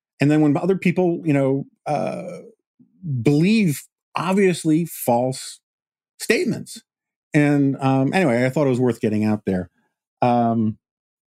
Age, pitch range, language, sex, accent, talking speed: 50-69, 105-140 Hz, English, male, American, 125 wpm